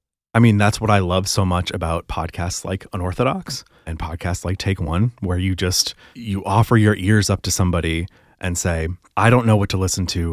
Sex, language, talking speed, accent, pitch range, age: male, English, 210 wpm, American, 90-110 Hz, 30-49